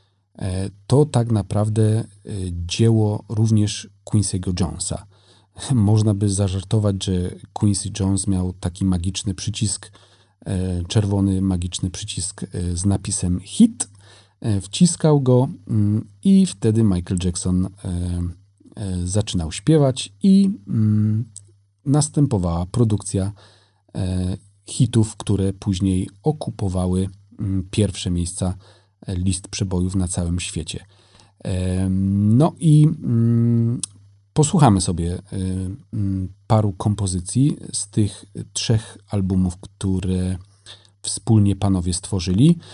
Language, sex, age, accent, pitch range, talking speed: Polish, male, 40-59, native, 95-110 Hz, 85 wpm